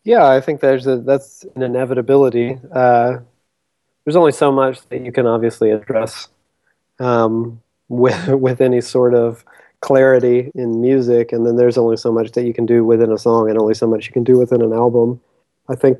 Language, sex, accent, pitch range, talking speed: English, male, American, 120-135 Hz, 195 wpm